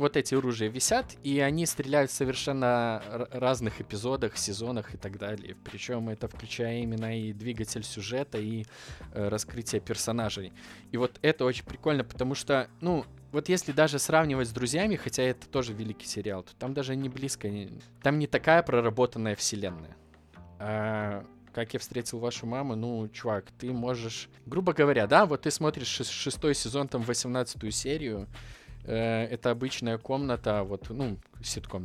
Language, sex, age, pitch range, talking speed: Russian, male, 20-39, 110-135 Hz, 155 wpm